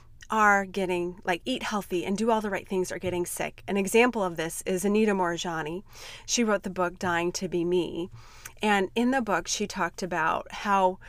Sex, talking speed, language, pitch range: female, 200 wpm, English, 175-220 Hz